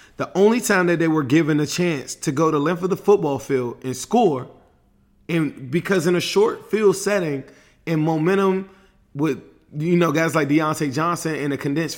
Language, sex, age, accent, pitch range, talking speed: English, male, 30-49, American, 130-160 Hz, 190 wpm